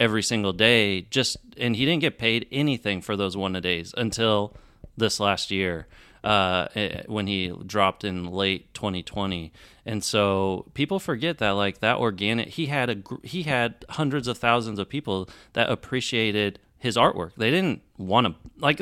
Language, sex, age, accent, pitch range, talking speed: English, male, 30-49, American, 100-120 Hz, 170 wpm